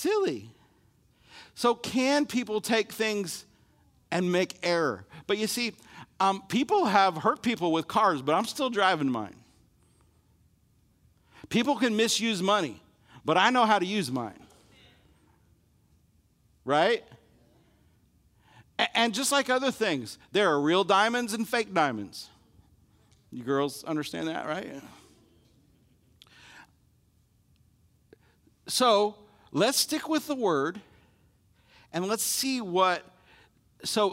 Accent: American